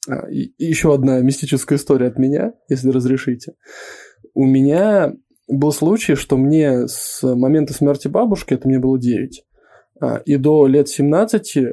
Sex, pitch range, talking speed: male, 130-155 Hz, 140 wpm